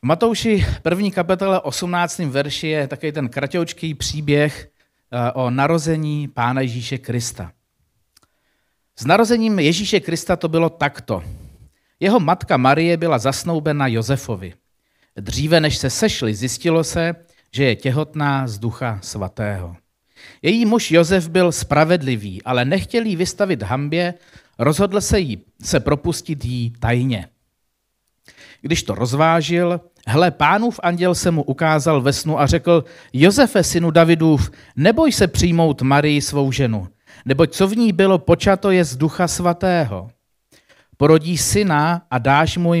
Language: Czech